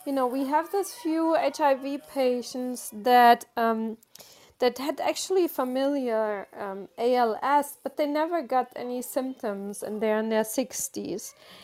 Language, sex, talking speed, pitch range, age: English, female, 140 wpm, 215-270 Hz, 20-39